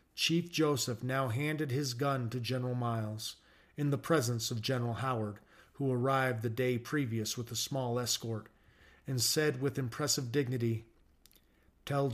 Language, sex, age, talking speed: English, male, 40-59, 150 wpm